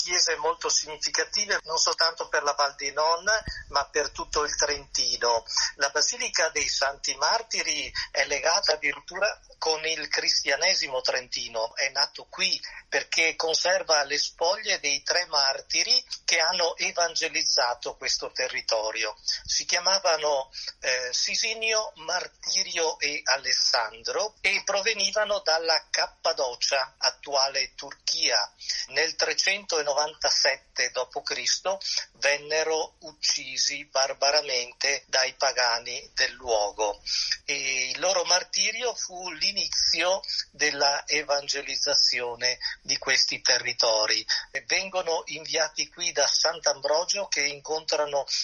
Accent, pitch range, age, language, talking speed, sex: native, 140-185 Hz, 50-69, Italian, 105 wpm, male